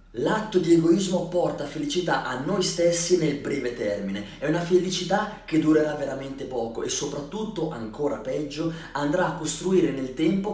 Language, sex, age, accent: Italian, male, 20-39, native